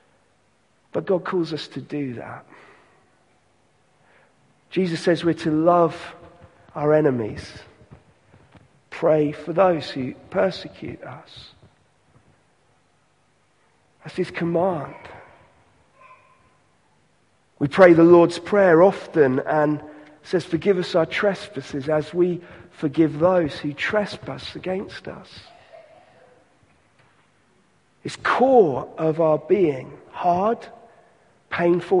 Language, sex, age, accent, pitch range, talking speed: English, male, 40-59, British, 150-185 Hz, 95 wpm